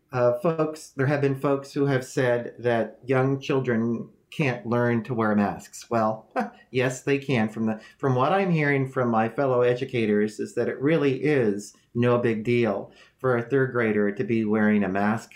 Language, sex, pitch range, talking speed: English, male, 115-140 Hz, 190 wpm